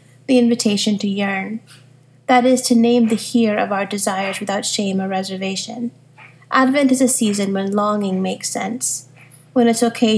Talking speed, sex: 165 wpm, female